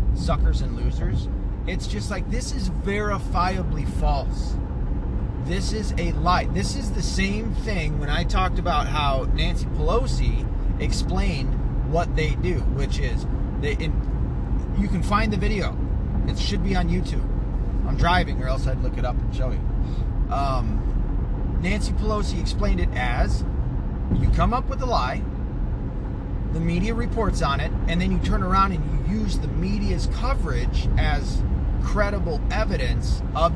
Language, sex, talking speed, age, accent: English, male, 155 wpm, 30-49, American